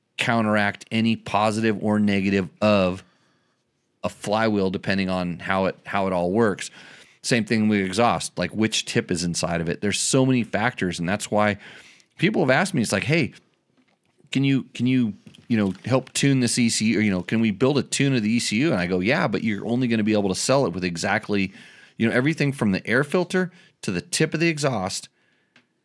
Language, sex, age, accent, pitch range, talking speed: English, male, 30-49, American, 100-130 Hz, 210 wpm